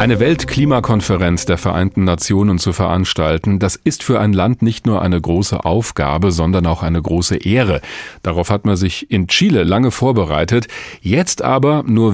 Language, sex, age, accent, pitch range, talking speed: German, male, 40-59, German, 95-120 Hz, 165 wpm